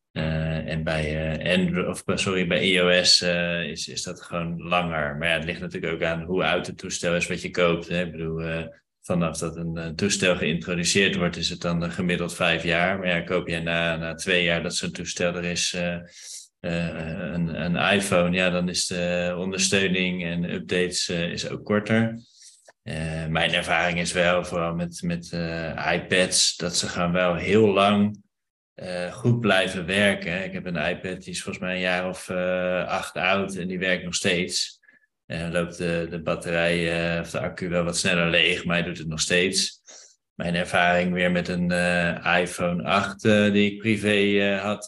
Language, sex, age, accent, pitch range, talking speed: Dutch, male, 20-39, Dutch, 80-95 Hz, 200 wpm